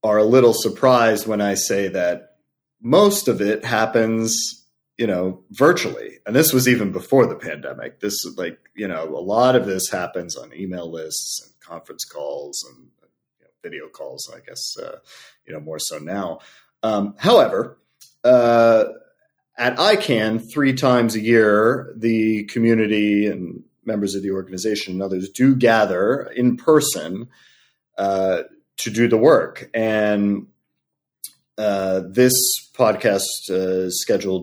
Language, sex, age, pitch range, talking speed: English, male, 30-49, 95-125 Hz, 145 wpm